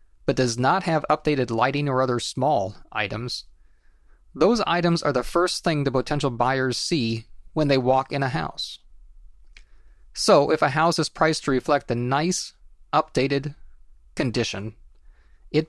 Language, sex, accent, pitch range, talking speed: English, male, American, 110-150 Hz, 150 wpm